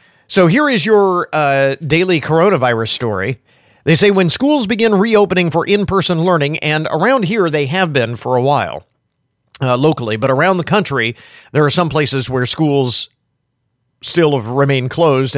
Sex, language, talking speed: male, English, 170 wpm